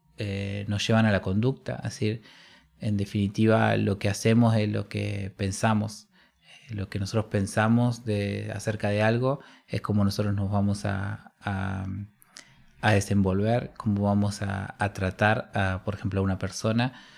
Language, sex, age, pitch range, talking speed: Spanish, male, 20-39, 100-115 Hz, 160 wpm